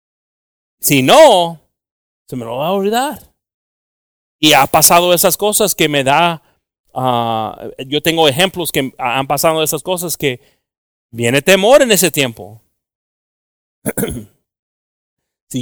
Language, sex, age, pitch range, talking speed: English, male, 30-49, 135-180 Hz, 120 wpm